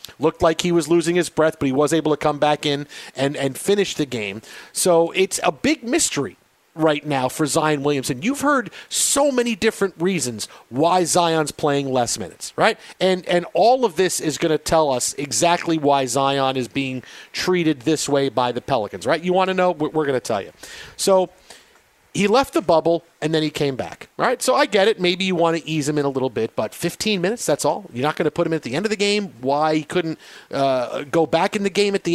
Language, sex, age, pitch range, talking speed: English, male, 40-59, 140-175 Hz, 235 wpm